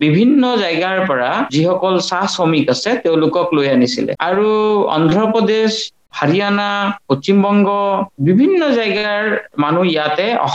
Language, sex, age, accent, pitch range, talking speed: Bengali, male, 50-69, native, 165-225 Hz, 85 wpm